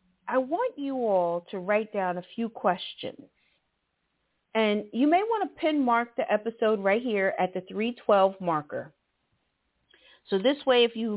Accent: American